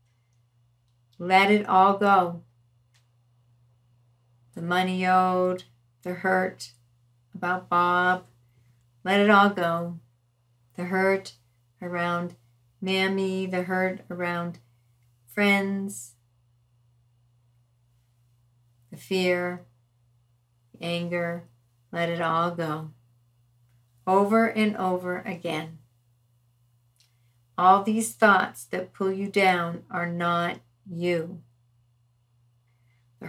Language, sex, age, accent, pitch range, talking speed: English, female, 40-59, American, 120-185 Hz, 85 wpm